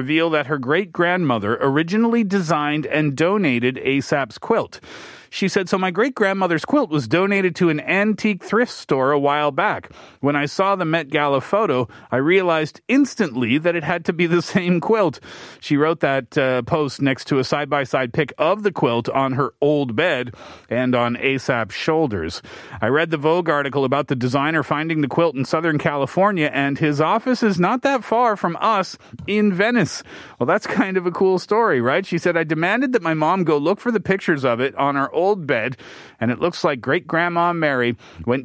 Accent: American